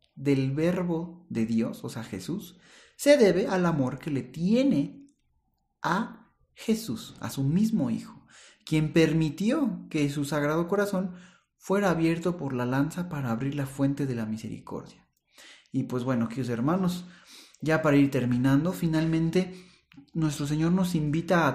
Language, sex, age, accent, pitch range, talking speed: Spanish, male, 40-59, Mexican, 130-180 Hz, 150 wpm